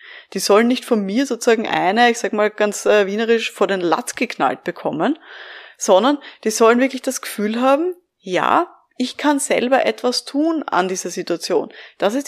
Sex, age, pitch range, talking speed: female, 20-39, 190-240 Hz, 170 wpm